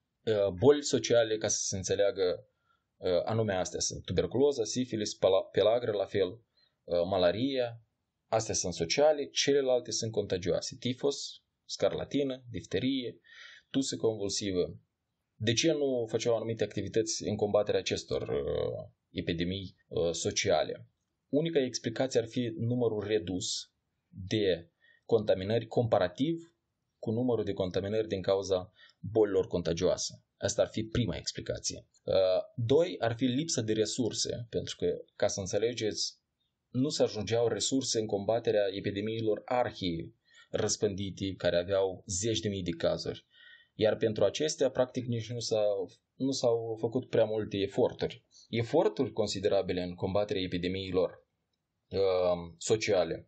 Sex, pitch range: male, 100-135 Hz